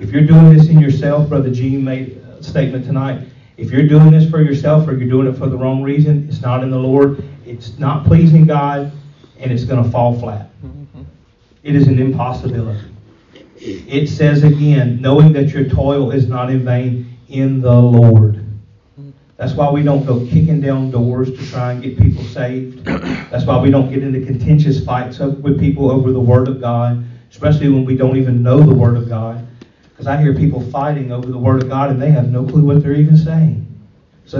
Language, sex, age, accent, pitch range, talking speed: English, male, 40-59, American, 120-145 Hz, 205 wpm